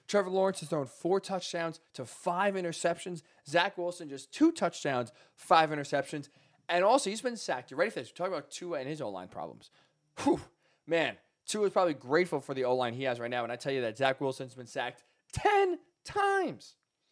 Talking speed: 205 wpm